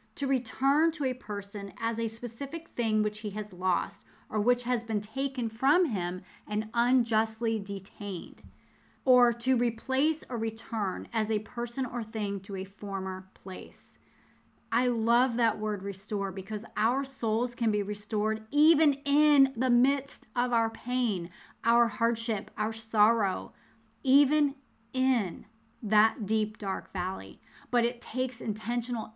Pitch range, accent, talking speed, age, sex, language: 215-265 Hz, American, 140 wpm, 30-49, female, English